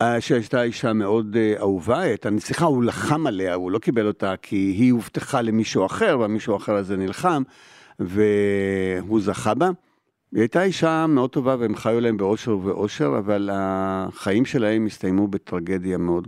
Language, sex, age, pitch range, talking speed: Hebrew, male, 60-79, 100-130 Hz, 150 wpm